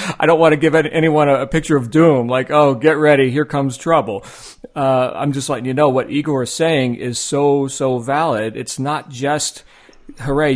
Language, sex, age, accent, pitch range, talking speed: English, male, 40-59, American, 120-145 Hz, 200 wpm